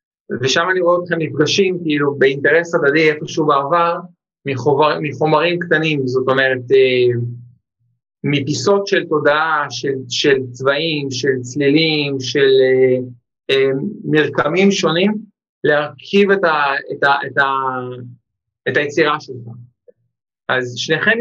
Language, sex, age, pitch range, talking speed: Hebrew, male, 50-69, 130-175 Hz, 125 wpm